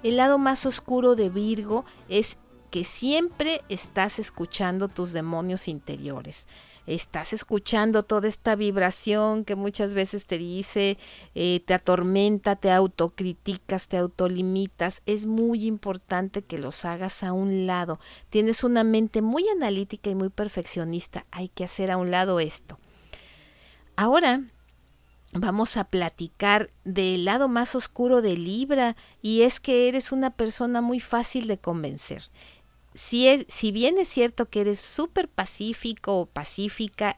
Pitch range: 180-230 Hz